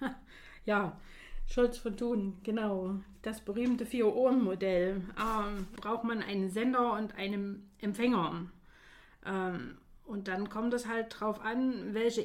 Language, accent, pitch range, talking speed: German, German, 195-230 Hz, 120 wpm